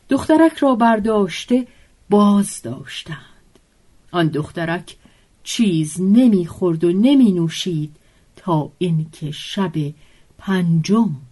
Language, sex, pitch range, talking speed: Persian, female, 160-205 Hz, 85 wpm